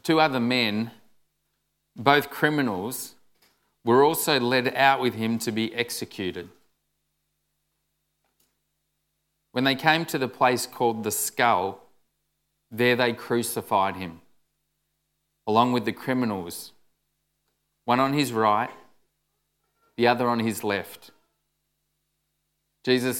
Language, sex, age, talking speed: English, male, 30-49, 105 wpm